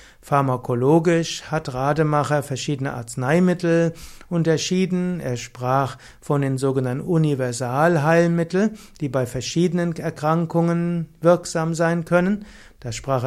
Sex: male